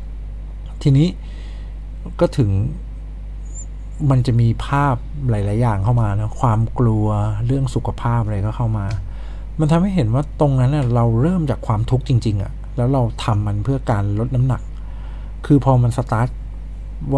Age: 60-79